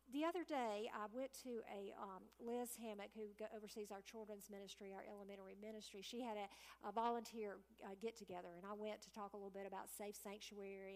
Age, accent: 50-69, American